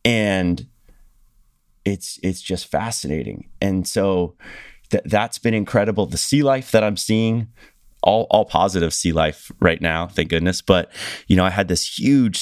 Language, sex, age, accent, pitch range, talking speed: English, male, 30-49, American, 85-115 Hz, 155 wpm